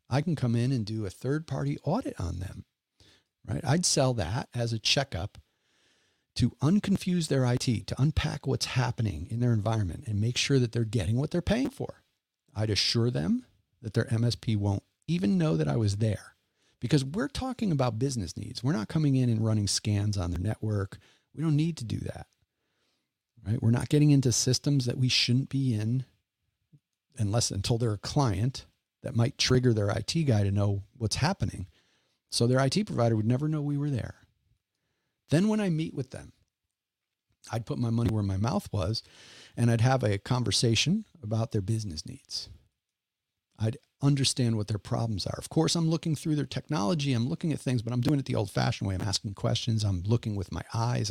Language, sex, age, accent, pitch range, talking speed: English, male, 40-59, American, 105-140 Hz, 195 wpm